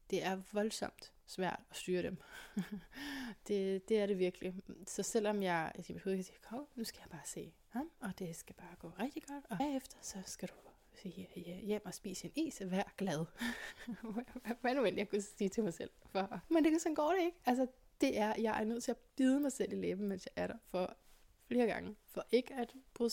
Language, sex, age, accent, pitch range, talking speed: Danish, female, 20-39, native, 195-240 Hz, 225 wpm